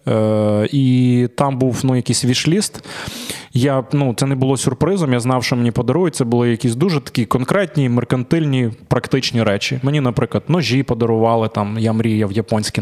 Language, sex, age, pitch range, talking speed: Ukrainian, male, 20-39, 115-145 Hz, 160 wpm